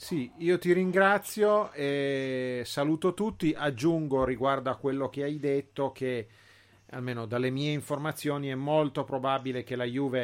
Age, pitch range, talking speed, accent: 40-59, 115-135 Hz, 145 wpm, native